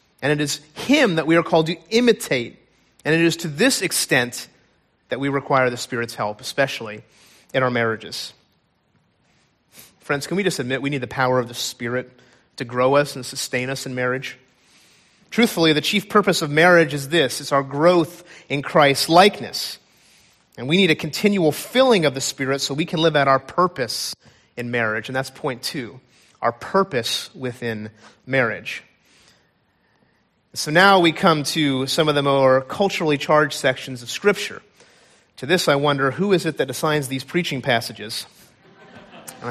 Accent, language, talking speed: American, English, 170 wpm